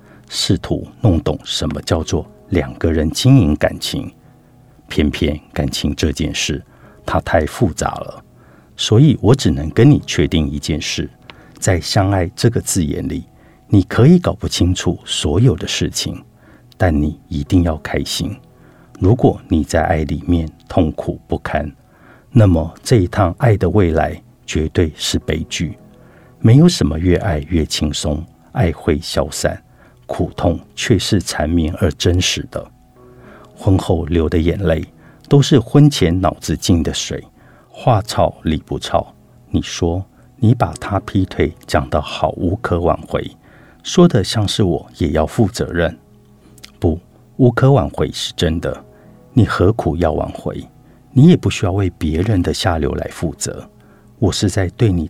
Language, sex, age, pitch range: Chinese, male, 50-69, 80-115 Hz